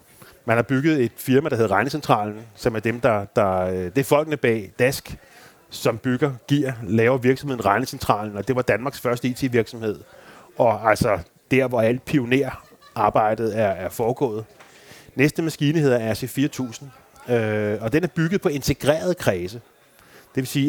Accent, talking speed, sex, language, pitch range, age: native, 155 wpm, male, Danish, 115-145 Hz, 30-49